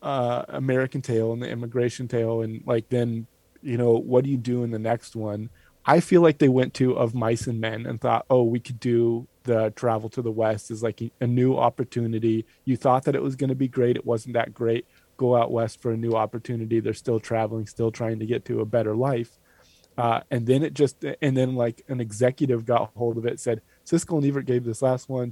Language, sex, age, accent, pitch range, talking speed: English, male, 20-39, American, 115-125 Hz, 235 wpm